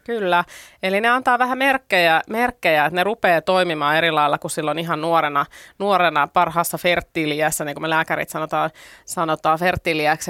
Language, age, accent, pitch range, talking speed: Finnish, 30-49, native, 155-190 Hz, 155 wpm